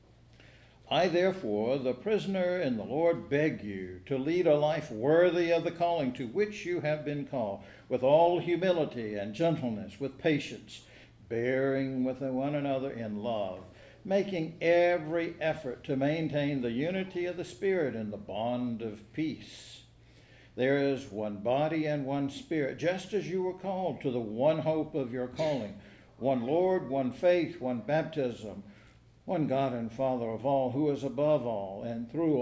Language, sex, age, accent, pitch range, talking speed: English, male, 60-79, American, 115-165 Hz, 165 wpm